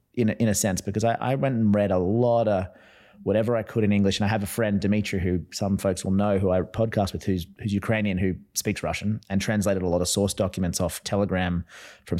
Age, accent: 30-49, Australian